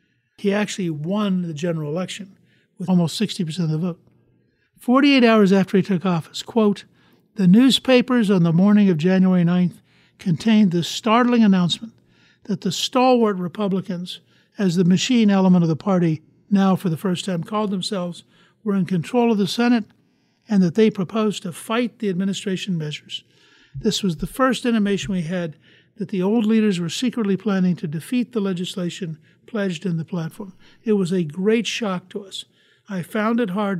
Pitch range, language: 175-210 Hz, English